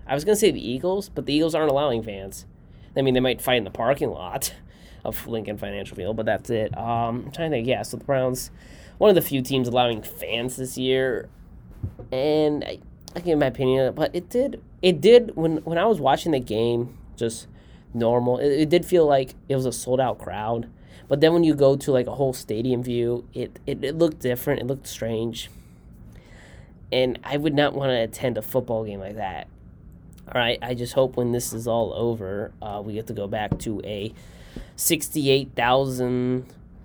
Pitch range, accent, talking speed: 110-140 Hz, American, 205 wpm